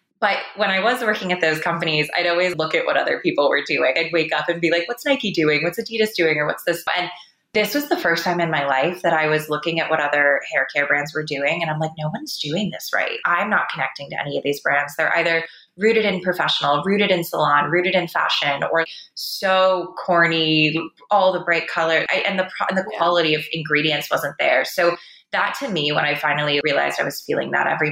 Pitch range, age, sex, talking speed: 155-190 Hz, 20-39, female, 230 wpm